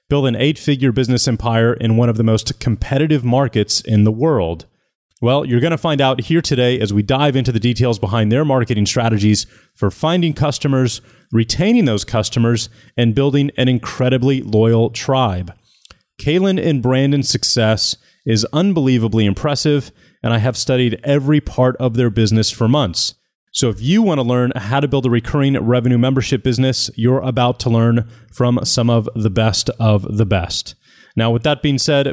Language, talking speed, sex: English, 175 wpm, male